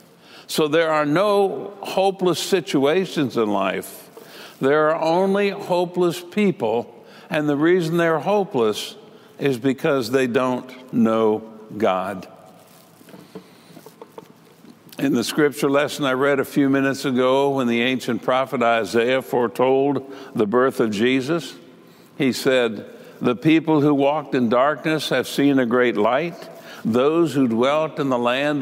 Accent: American